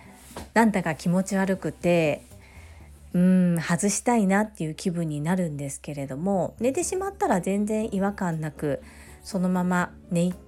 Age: 40-59